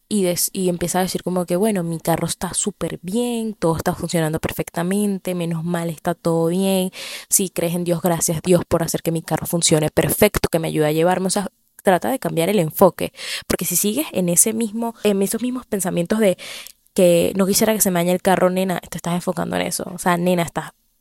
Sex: female